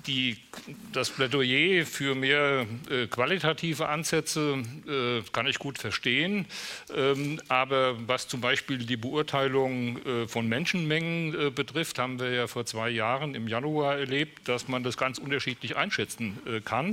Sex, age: male, 60-79